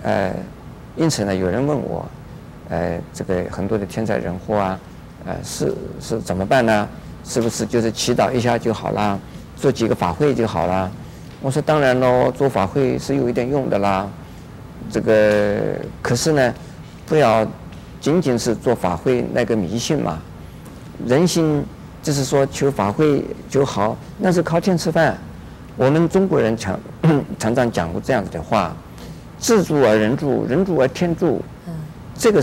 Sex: male